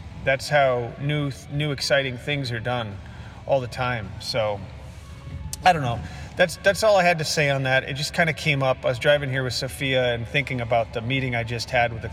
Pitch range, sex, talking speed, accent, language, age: 120-145 Hz, male, 230 wpm, American, English, 30-49